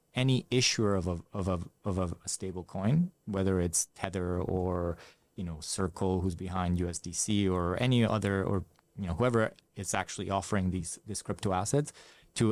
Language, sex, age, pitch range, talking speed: English, male, 20-39, 95-110 Hz, 170 wpm